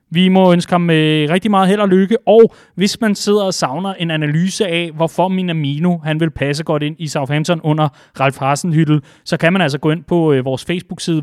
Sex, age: male, 30-49